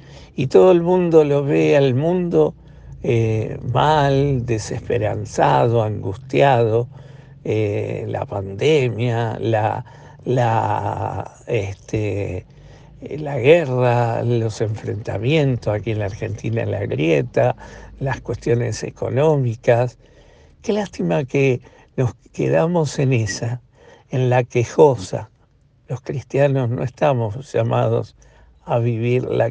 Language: Spanish